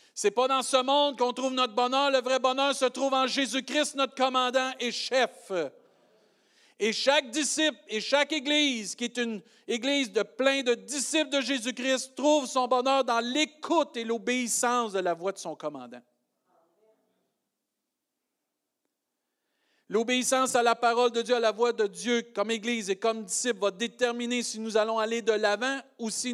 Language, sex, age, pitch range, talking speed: French, male, 50-69, 210-265 Hz, 175 wpm